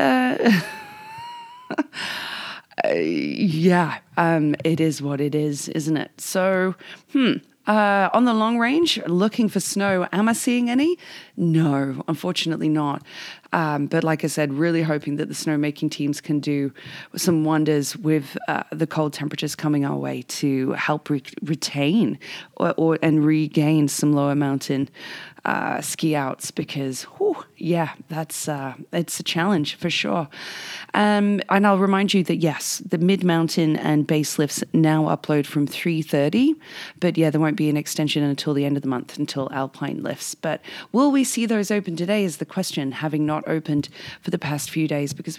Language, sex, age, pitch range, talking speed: English, female, 20-39, 150-190 Hz, 170 wpm